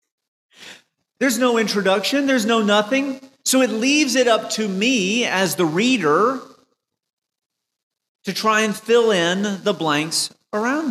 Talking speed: 130 wpm